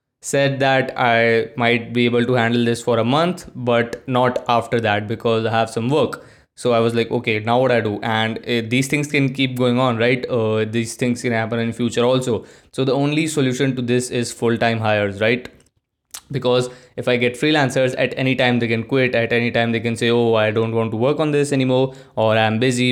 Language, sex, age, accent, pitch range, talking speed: Hindi, male, 20-39, native, 115-125 Hz, 230 wpm